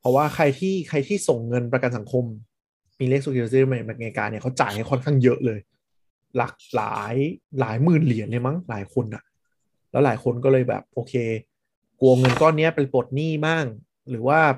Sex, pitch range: male, 120-145 Hz